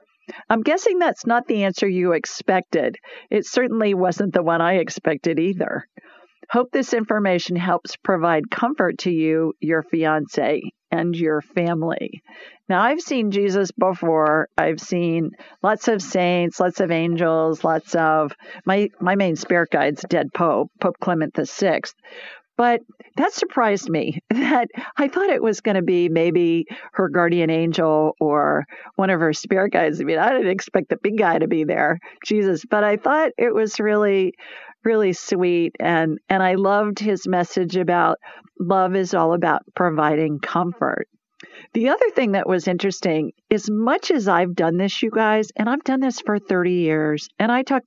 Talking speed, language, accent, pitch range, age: 170 wpm, English, American, 170-215 Hz, 50-69